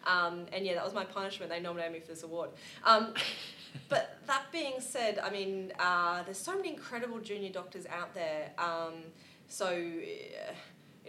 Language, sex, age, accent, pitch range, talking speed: English, female, 20-39, Australian, 165-210 Hz, 175 wpm